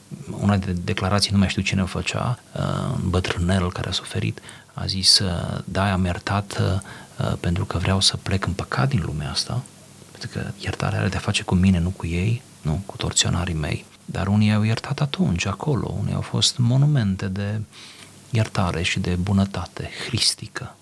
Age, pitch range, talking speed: 30-49, 95-120 Hz, 175 wpm